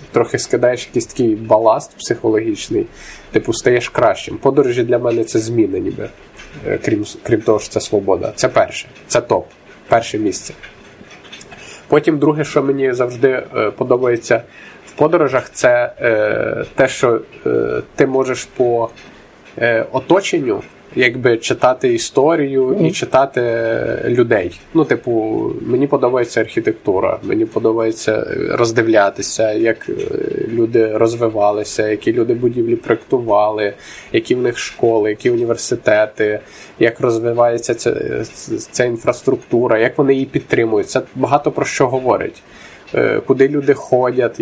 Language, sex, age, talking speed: Ukrainian, male, 20-39, 120 wpm